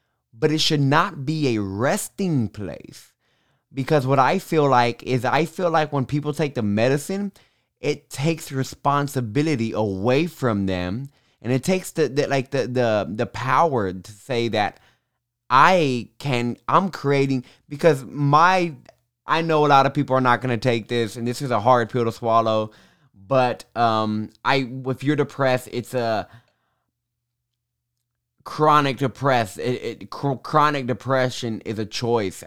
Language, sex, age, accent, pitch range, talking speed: English, male, 20-39, American, 110-145 Hz, 155 wpm